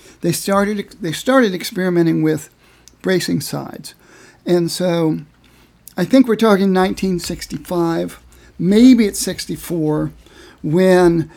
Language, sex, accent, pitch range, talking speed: English, male, American, 160-200 Hz, 100 wpm